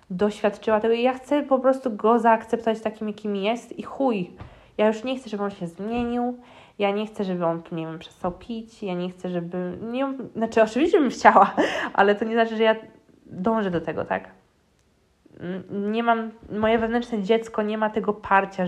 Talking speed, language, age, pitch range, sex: 190 wpm, Polish, 20-39, 190-230 Hz, female